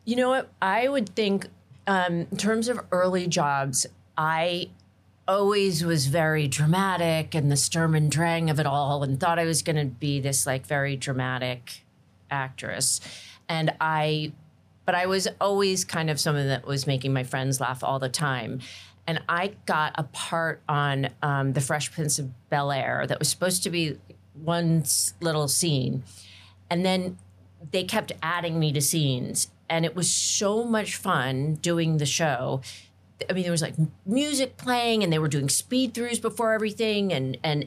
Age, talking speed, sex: 40-59, 175 wpm, female